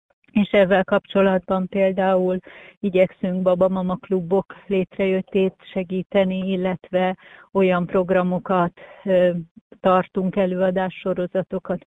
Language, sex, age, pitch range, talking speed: Hungarian, female, 30-49, 185-200 Hz, 70 wpm